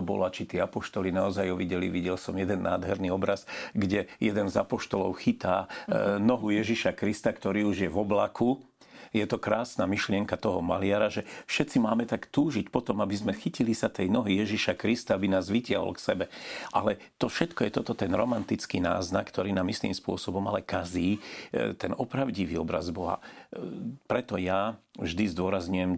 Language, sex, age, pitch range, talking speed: Slovak, male, 50-69, 90-105 Hz, 165 wpm